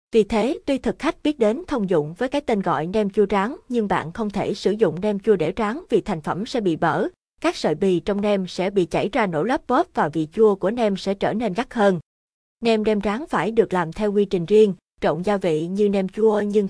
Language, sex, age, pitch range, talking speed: Vietnamese, female, 20-39, 180-220 Hz, 255 wpm